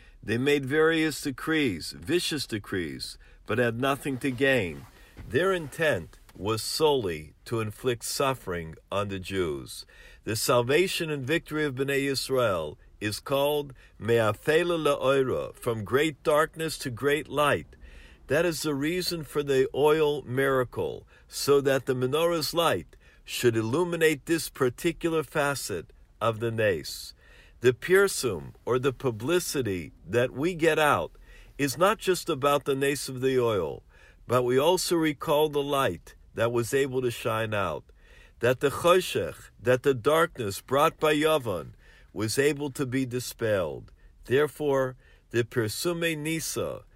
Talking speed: 135 wpm